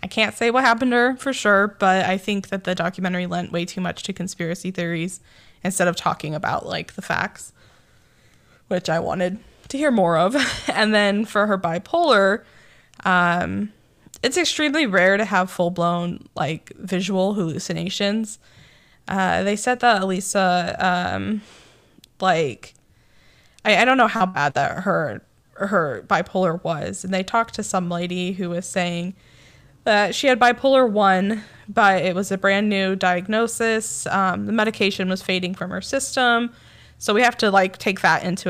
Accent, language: American, English